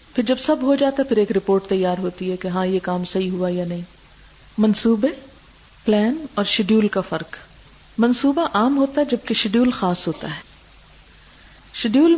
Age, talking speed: 50-69, 175 wpm